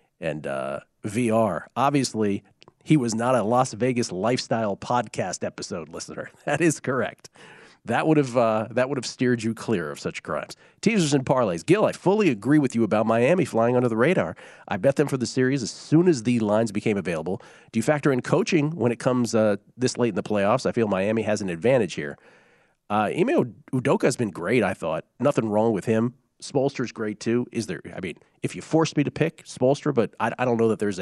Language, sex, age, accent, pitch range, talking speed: English, male, 40-59, American, 110-140 Hz, 215 wpm